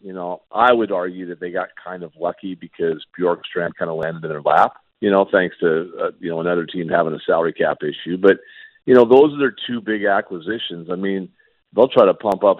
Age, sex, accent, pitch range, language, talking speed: 50-69, male, American, 90-115 Hz, English, 235 wpm